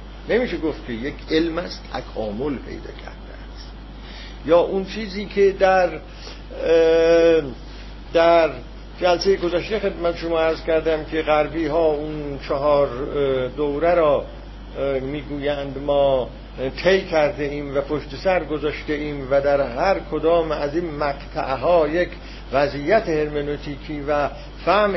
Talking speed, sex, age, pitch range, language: 125 wpm, male, 60-79, 150-205 Hz, Persian